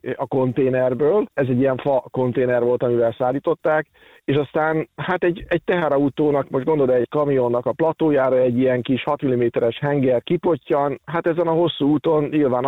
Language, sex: Hungarian, male